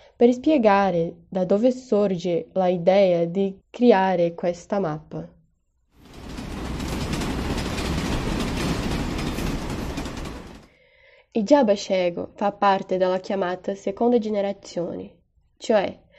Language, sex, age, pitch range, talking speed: Italian, female, 10-29, 185-225 Hz, 70 wpm